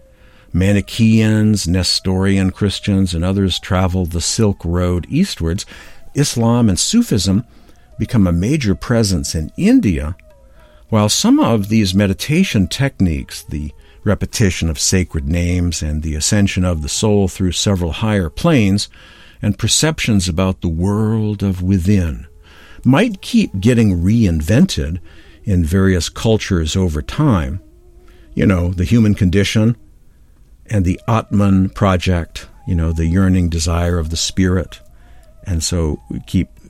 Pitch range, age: 85-110 Hz, 60-79